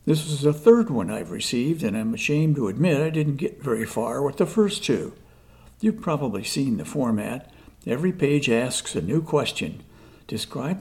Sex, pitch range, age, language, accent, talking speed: male, 120-180 Hz, 60-79, English, American, 185 wpm